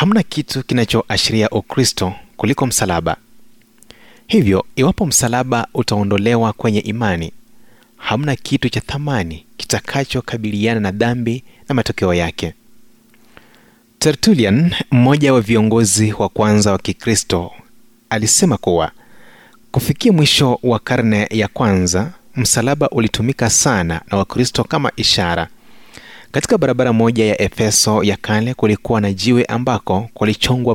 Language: Swahili